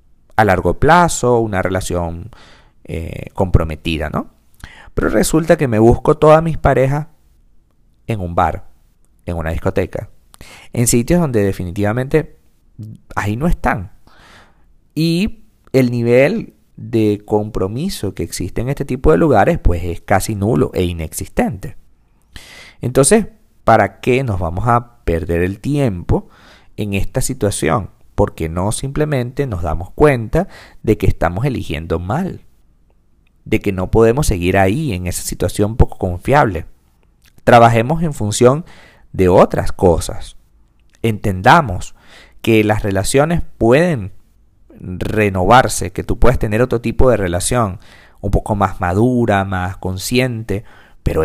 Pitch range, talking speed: 90-125 Hz, 125 wpm